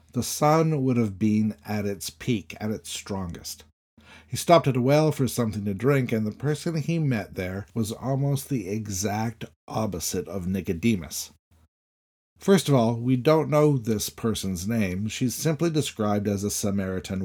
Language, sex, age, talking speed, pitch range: English, male, 50-69, 165 wpm, 90-130 Hz